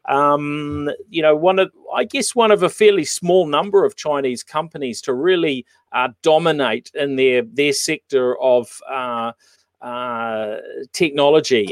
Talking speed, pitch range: 145 wpm, 130-175 Hz